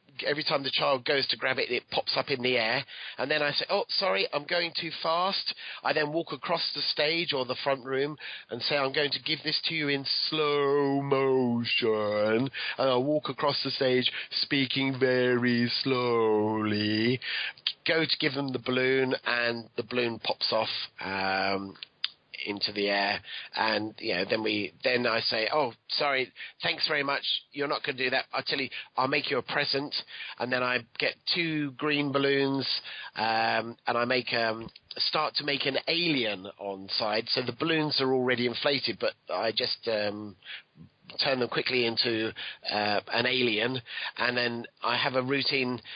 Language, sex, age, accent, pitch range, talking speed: English, male, 30-49, British, 115-145 Hz, 180 wpm